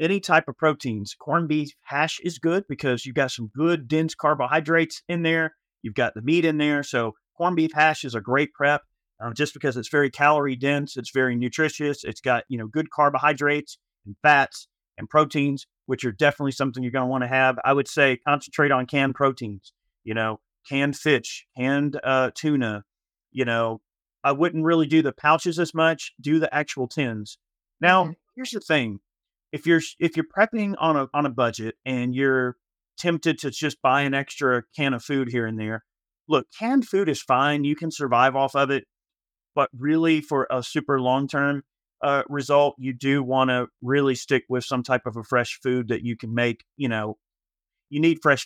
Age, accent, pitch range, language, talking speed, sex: 40-59, American, 125-150 Hz, English, 200 wpm, male